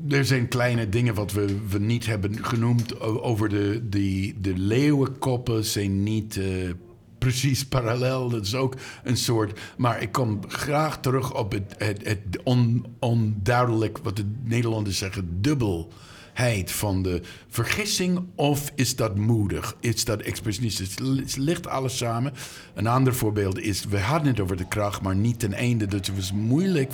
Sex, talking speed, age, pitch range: male, 155 wpm, 50-69, 105-135 Hz